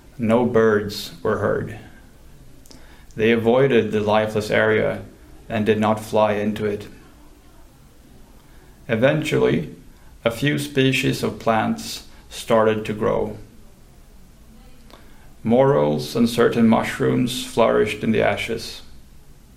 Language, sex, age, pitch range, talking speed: English, male, 30-49, 105-120 Hz, 100 wpm